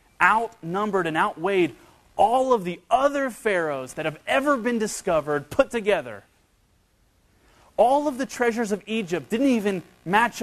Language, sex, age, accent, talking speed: English, male, 30-49, American, 140 wpm